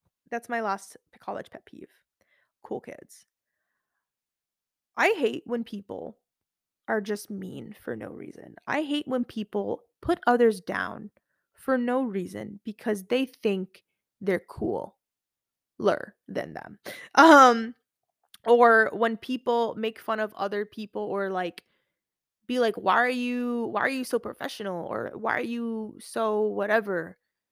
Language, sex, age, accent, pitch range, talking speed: English, female, 20-39, American, 205-250 Hz, 135 wpm